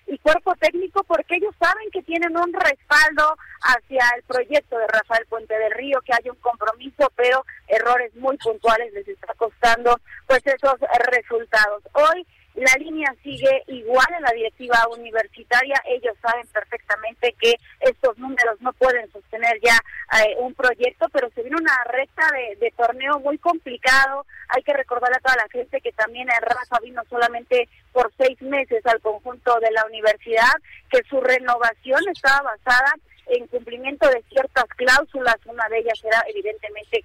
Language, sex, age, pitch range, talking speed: Spanish, female, 30-49, 230-275 Hz, 160 wpm